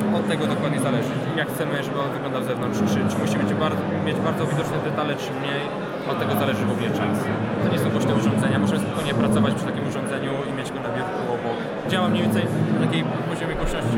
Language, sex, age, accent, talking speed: Polish, male, 20-39, native, 220 wpm